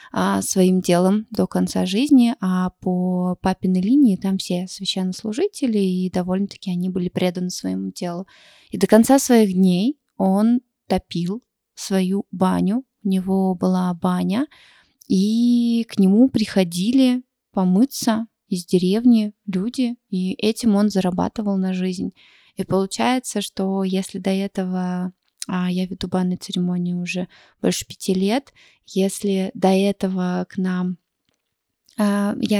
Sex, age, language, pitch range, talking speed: female, 20-39, Russian, 185-210 Hz, 120 wpm